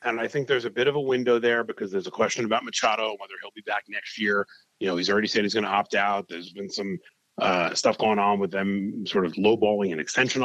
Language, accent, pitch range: English, American, 100-125 Hz